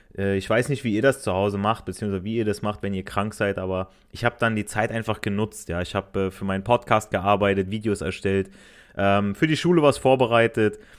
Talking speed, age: 230 wpm, 30-49